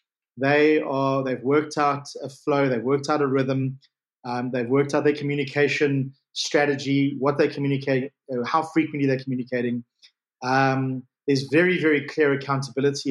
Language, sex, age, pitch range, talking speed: English, male, 30-49, 135-155 Hz, 145 wpm